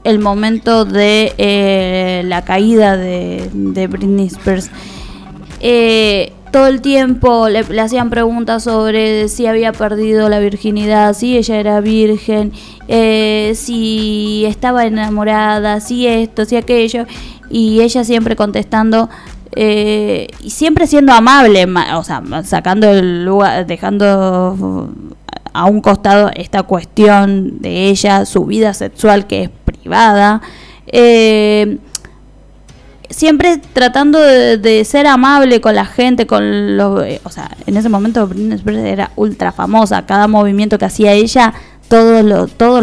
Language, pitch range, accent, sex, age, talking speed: Spanish, 195-230 Hz, Argentinian, female, 20-39, 130 wpm